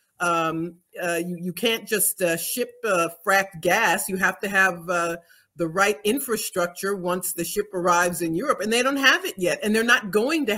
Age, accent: 50-69, American